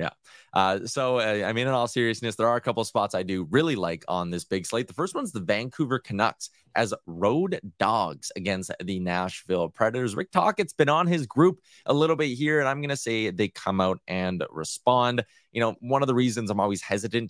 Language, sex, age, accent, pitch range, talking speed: English, male, 20-39, American, 95-130 Hz, 225 wpm